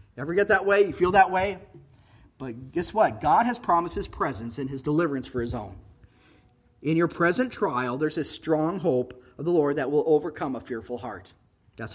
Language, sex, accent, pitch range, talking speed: English, male, American, 145-205 Hz, 200 wpm